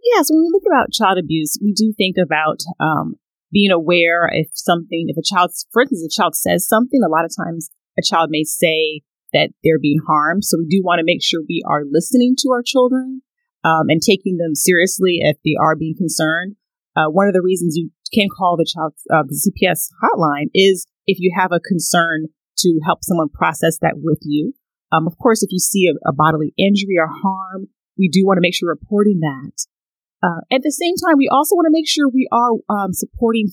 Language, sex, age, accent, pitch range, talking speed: English, female, 30-49, American, 165-235 Hz, 220 wpm